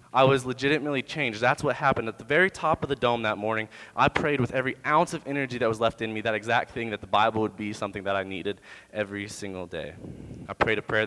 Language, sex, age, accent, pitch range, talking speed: English, male, 20-39, American, 105-140 Hz, 255 wpm